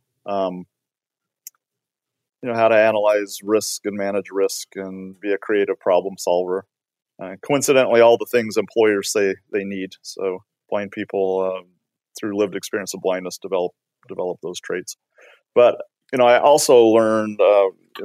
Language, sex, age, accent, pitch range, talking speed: English, male, 40-59, American, 95-115 Hz, 155 wpm